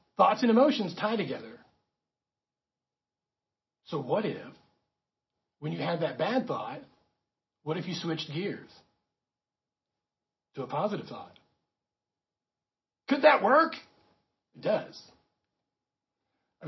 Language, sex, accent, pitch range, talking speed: English, male, American, 165-235 Hz, 105 wpm